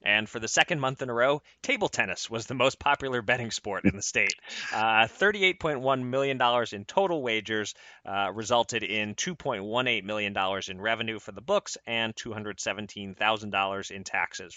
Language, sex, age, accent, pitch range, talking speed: English, male, 30-49, American, 105-140 Hz, 160 wpm